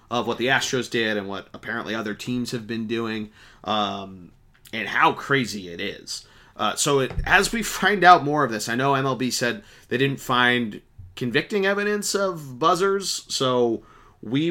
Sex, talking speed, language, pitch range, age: male, 170 wpm, English, 110-145 Hz, 30-49